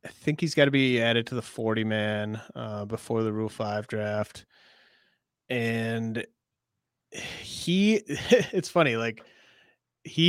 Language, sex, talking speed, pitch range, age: English, male, 135 wpm, 110-130 Hz, 30-49